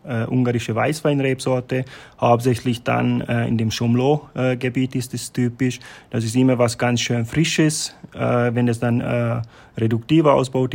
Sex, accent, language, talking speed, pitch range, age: male, German, German, 155 wpm, 115-130 Hz, 20-39